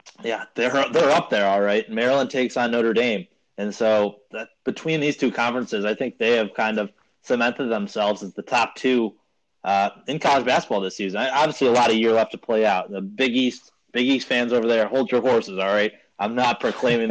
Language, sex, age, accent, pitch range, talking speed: English, male, 20-39, American, 105-130 Hz, 220 wpm